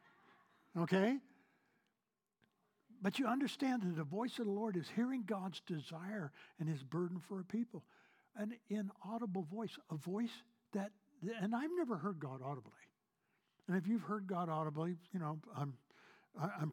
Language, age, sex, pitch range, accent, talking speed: English, 60-79, male, 150-205 Hz, American, 150 wpm